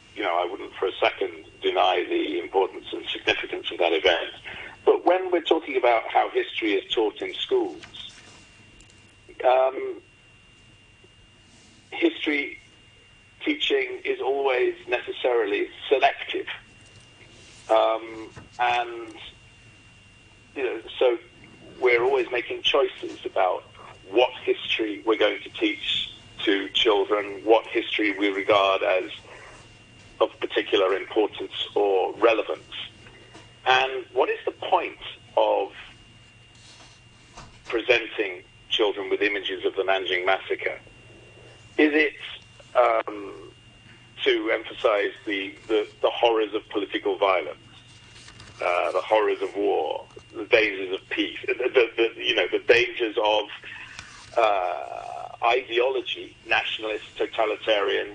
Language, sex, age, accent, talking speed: English, male, 50-69, British, 110 wpm